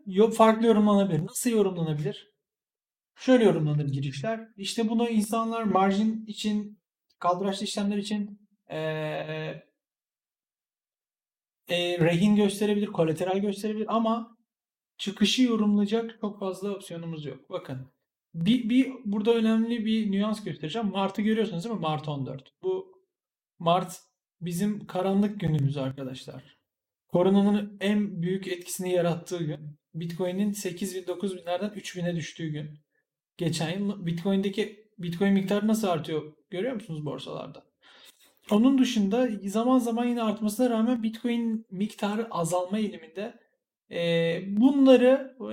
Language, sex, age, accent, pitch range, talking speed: Turkish, male, 40-59, native, 175-225 Hz, 110 wpm